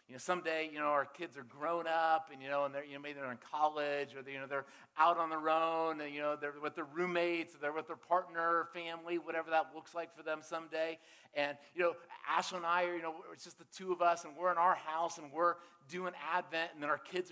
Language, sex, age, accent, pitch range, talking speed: English, male, 40-59, American, 140-180 Hz, 275 wpm